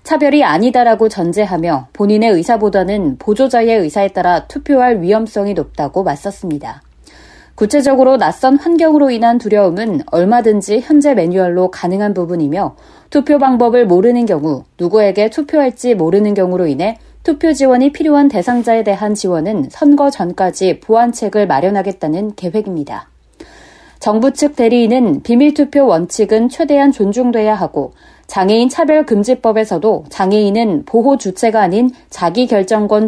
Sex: female